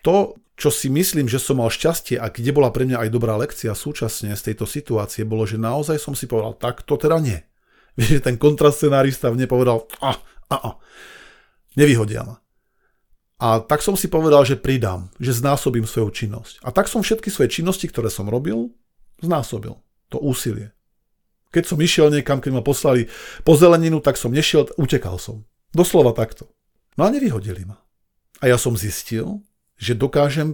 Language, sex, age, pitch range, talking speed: Slovak, male, 40-59, 115-150 Hz, 175 wpm